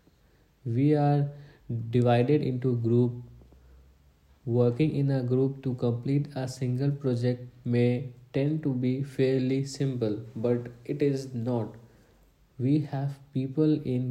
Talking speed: 120 wpm